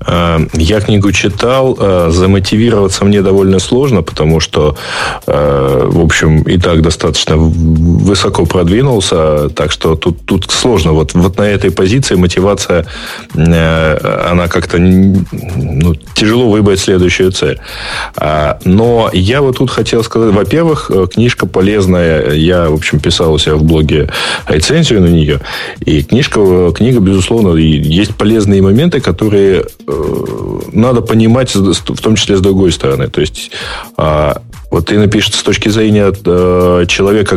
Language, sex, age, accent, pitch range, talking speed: Russian, male, 20-39, native, 85-105 Hz, 125 wpm